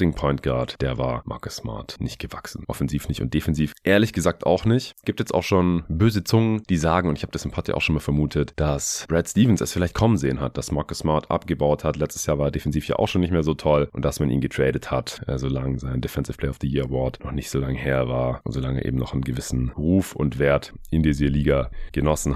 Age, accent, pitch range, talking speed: 30-49, German, 70-85 Hz, 245 wpm